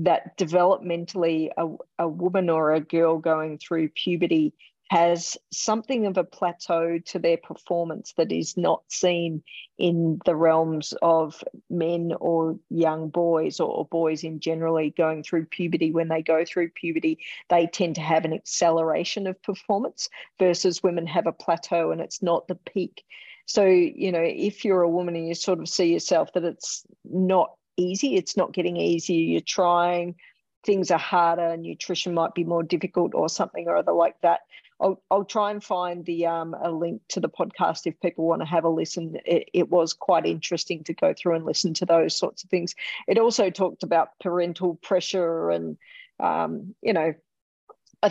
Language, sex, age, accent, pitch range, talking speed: English, female, 50-69, Australian, 165-185 Hz, 180 wpm